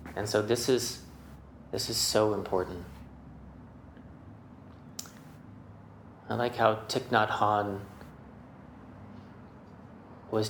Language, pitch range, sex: English, 100-120 Hz, male